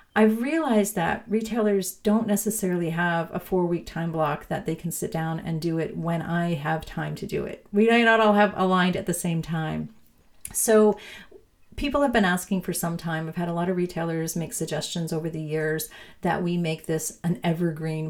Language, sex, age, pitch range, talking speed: English, female, 40-59, 165-215 Hz, 200 wpm